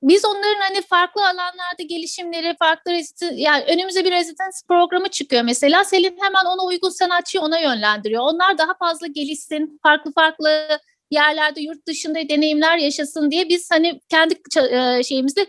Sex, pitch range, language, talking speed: female, 285-360 Hz, Turkish, 145 wpm